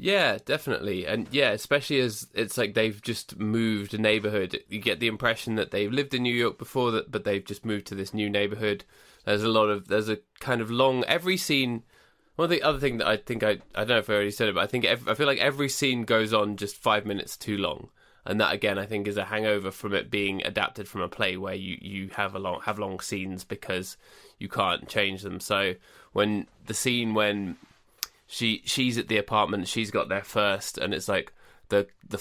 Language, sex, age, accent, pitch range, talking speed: English, male, 20-39, British, 100-115 Hz, 230 wpm